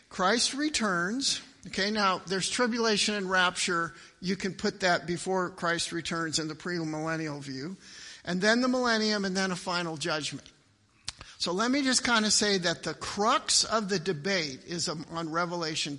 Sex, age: male, 50-69